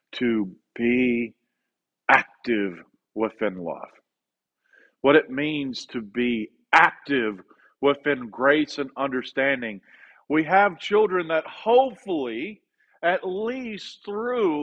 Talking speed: 95 wpm